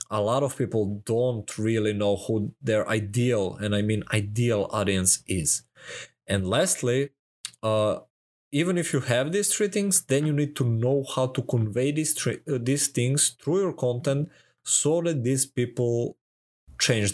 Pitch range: 115-145 Hz